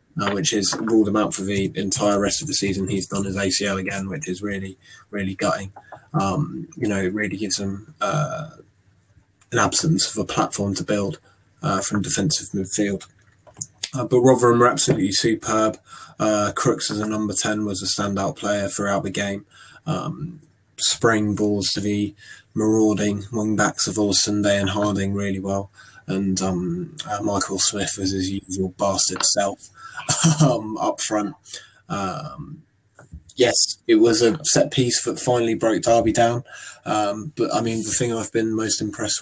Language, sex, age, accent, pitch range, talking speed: English, male, 20-39, British, 100-110 Hz, 170 wpm